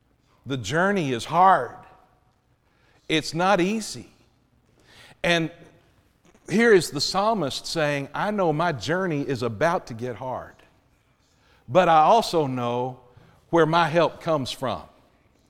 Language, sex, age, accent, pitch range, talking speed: English, male, 50-69, American, 135-180 Hz, 120 wpm